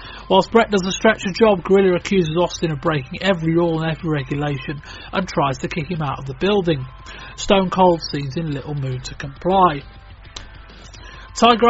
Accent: British